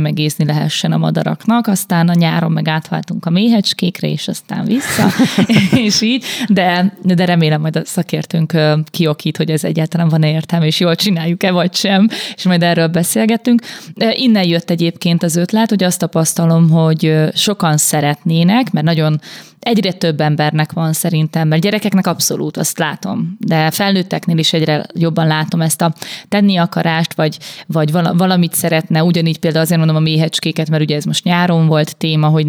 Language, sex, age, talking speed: Hungarian, female, 20-39, 165 wpm